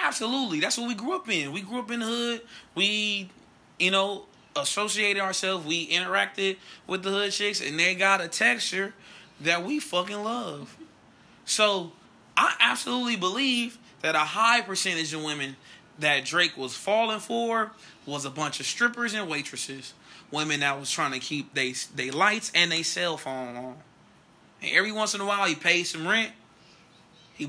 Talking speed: 175 wpm